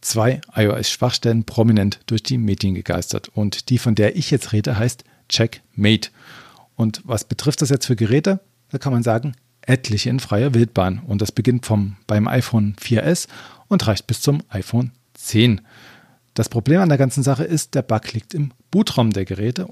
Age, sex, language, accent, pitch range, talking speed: 40-59, male, German, German, 115-140 Hz, 175 wpm